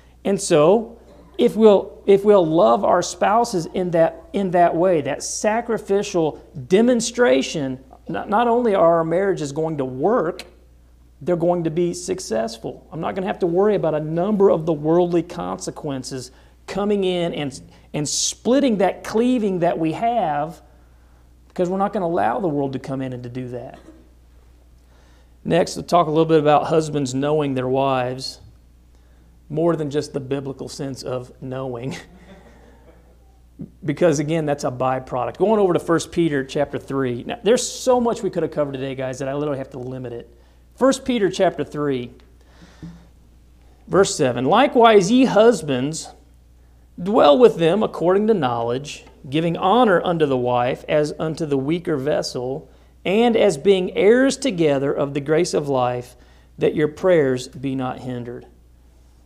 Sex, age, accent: male, 40-59, American